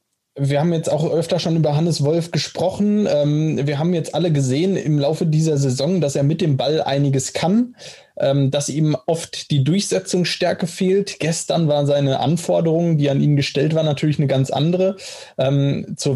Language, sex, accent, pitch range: German, male, German, 135-165 Hz